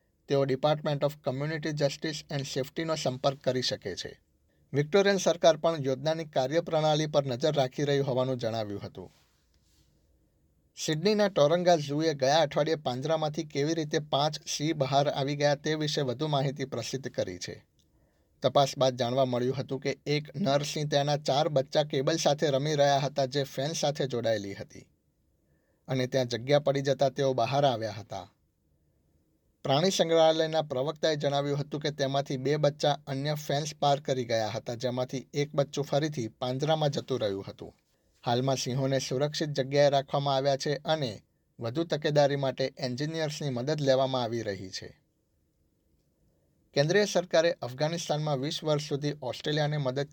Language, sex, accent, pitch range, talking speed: Gujarati, male, native, 130-150 Hz, 110 wpm